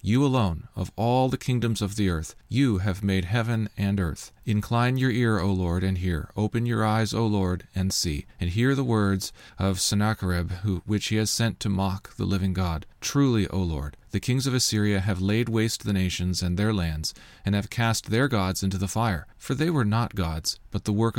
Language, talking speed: English, 210 wpm